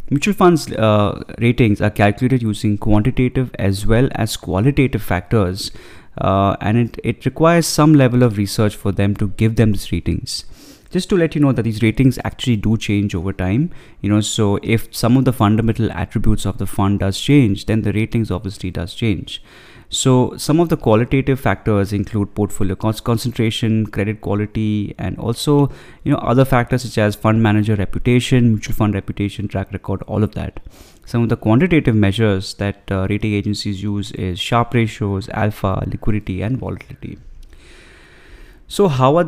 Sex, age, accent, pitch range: male, 20-39, Indian, 100-120 Hz